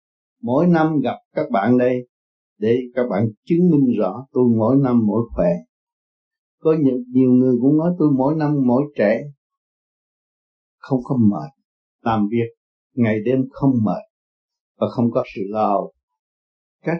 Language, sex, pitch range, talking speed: Vietnamese, male, 115-165 Hz, 150 wpm